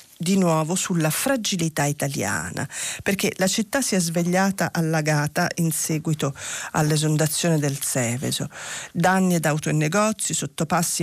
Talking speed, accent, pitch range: 125 wpm, native, 155-200 Hz